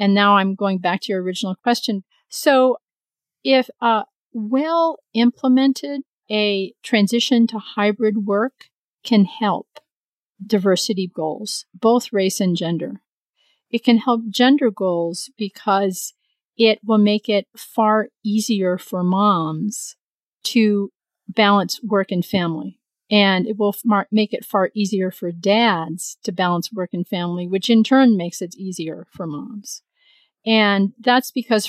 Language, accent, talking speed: English, American, 135 wpm